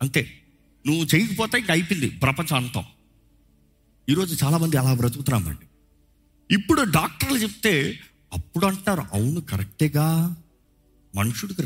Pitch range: 110-180 Hz